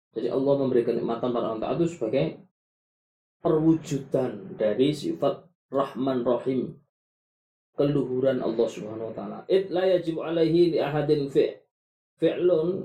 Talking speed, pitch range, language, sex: 110 wpm, 125-180 Hz, Malay, male